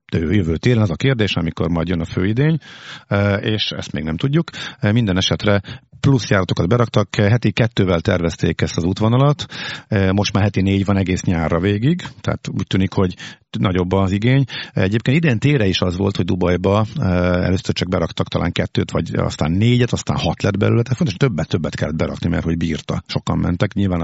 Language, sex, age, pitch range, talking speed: Hungarian, male, 50-69, 90-120 Hz, 180 wpm